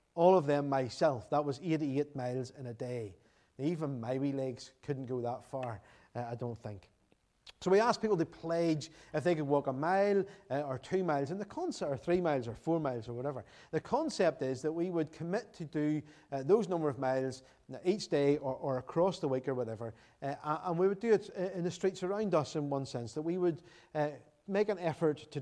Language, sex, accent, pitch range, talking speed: English, male, British, 125-170 Hz, 225 wpm